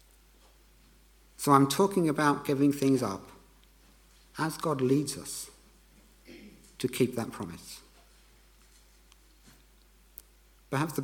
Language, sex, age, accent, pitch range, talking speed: English, male, 50-69, British, 110-135 Hz, 90 wpm